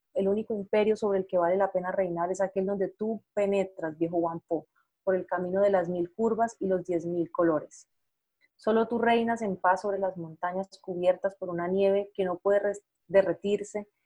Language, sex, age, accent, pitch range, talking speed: Spanish, female, 30-49, Colombian, 185-205 Hz, 200 wpm